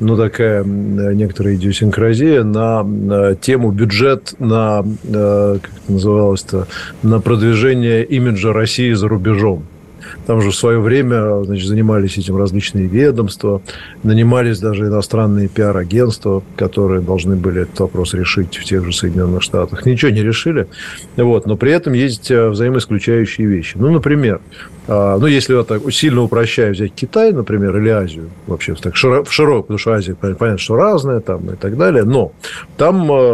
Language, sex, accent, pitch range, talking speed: Russian, male, native, 100-120 Hz, 150 wpm